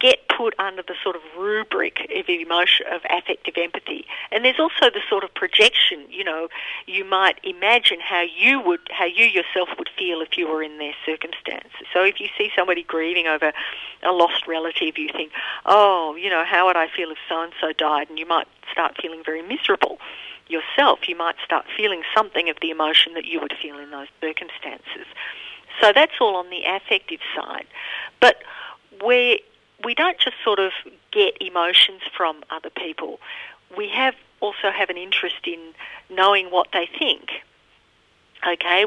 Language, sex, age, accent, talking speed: English, female, 50-69, Australian, 180 wpm